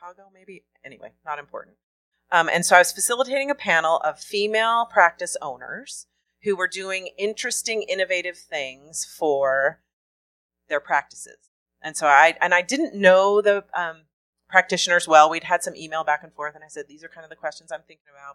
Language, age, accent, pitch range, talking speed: English, 30-49, American, 150-195 Hz, 180 wpm